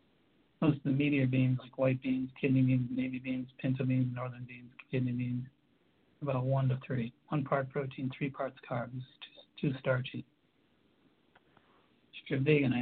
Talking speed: 165 wpm